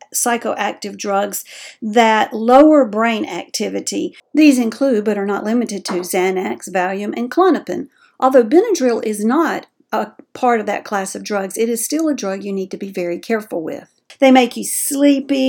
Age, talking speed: 50-69, 170 wpm